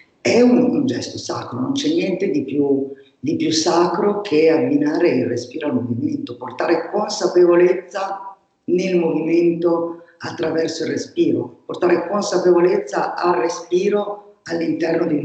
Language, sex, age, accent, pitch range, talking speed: Italian, female, 50-69, native, 130-195 Hz, 120 wpm